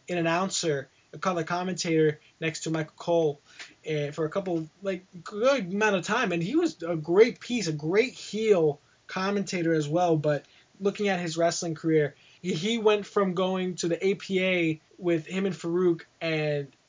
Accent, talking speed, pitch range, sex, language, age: American, 165 wpm, 155-180 Hz, male, English, 20-39